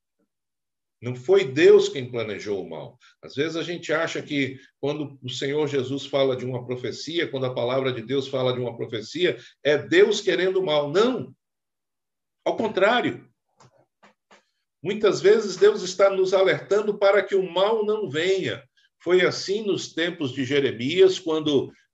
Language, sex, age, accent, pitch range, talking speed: Portuguese, male, 60-79, Brazilian, 130-190 Hz, 155 wpm